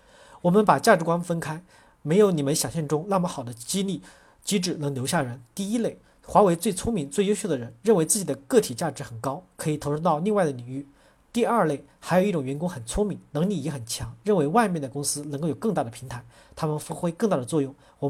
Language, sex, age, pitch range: Chinese, male, 40-59, 140-185 Hz